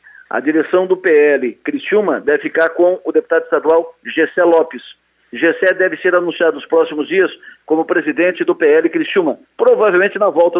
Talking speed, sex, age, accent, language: 160 wpm, male, 50-69, Brazilian, Portuguese